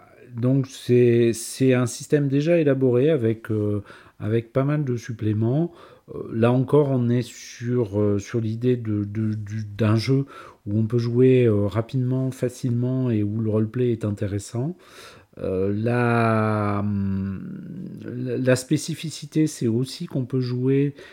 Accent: French